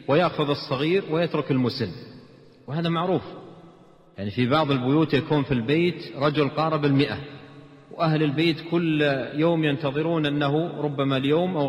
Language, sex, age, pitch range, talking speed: Arabic, male, 40-59, 125-155 Hz, 130 wpm